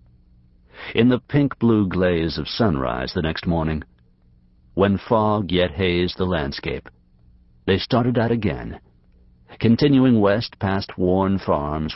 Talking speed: 120 wpm